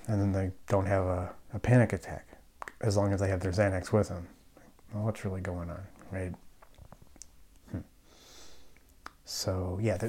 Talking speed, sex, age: 155 wpm, male, 30-49